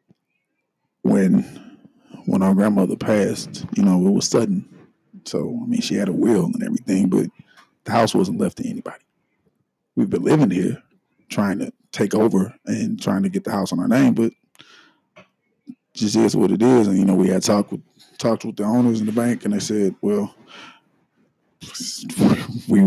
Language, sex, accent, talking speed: English, male, American, 180 wpm